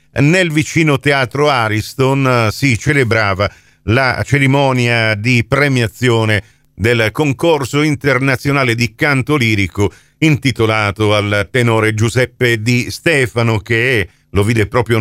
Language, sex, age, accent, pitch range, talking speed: Italian, male, 50-69, native, 105-135 Hz, 105 wpm